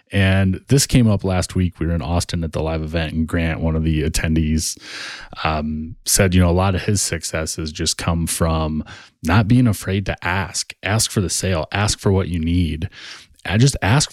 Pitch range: 85-110 Hz